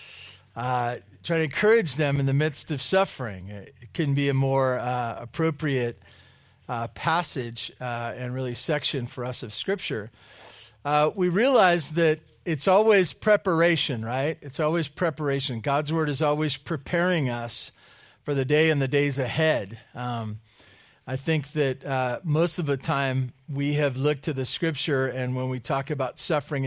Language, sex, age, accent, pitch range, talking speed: English, male, 40-59, American, 125-155 Hz, 160 wpm